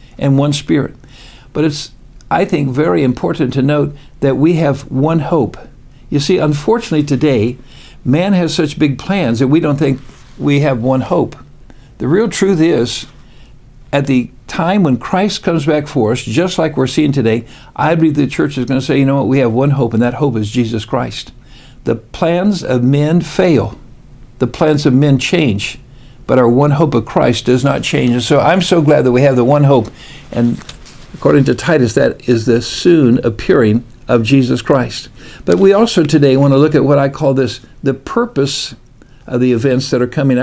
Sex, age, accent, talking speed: male, 60-79, American, 200 wpm